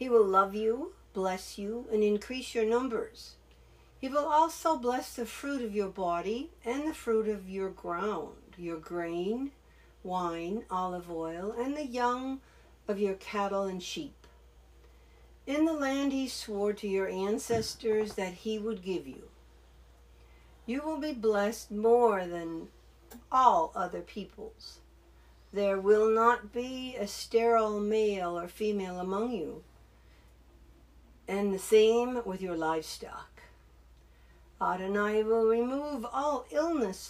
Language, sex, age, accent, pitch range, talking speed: English, female, 60-79, American, 170-235 Hz, 135 wpm